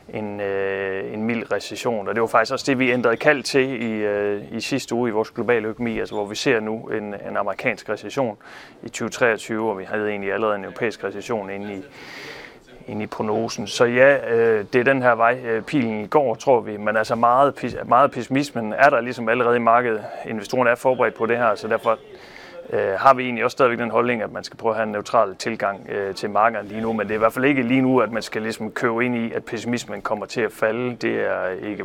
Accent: native